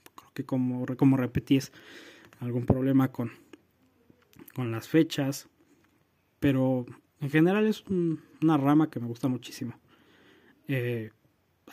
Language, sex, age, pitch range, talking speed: Spanish, male, 20-39, 125-145 Hz, 115 wpm